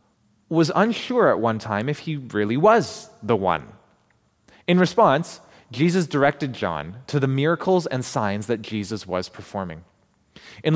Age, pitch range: 20-39, 105-155 Hz